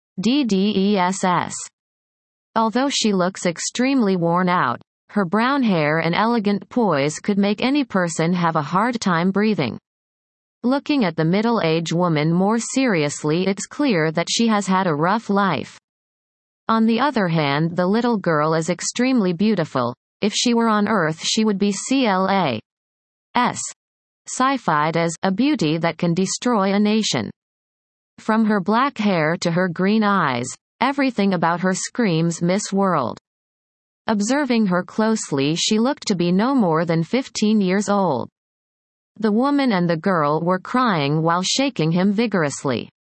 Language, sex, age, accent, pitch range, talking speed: English, female, 30-49, American, 170-225 Hz, 150 wpm